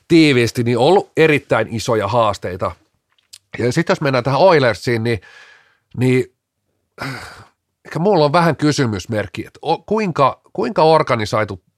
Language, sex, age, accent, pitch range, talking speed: Finnish, male, 30-49, native, 115-155 Hz, 120 wpm